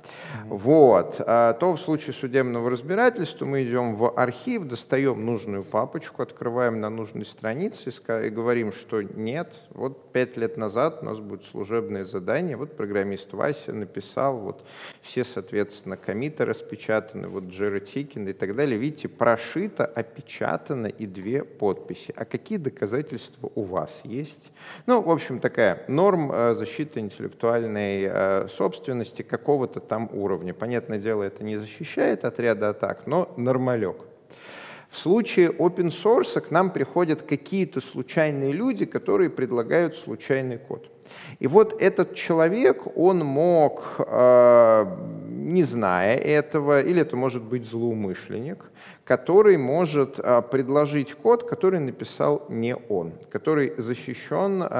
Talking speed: 125 wpm